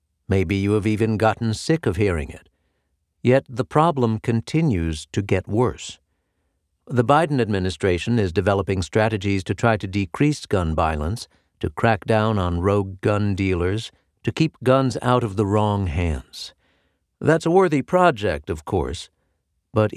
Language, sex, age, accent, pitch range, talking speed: English, male, 60-79, American, 95-125 Hz, 150 wpm